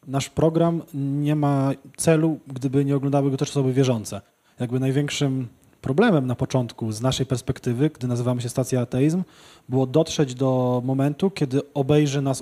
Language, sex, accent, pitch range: Polish, male, native, 130-145 Hz